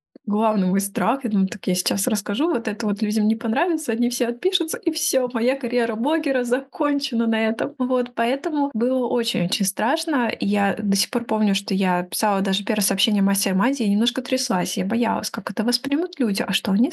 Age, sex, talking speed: 20-39, female, 195 wpm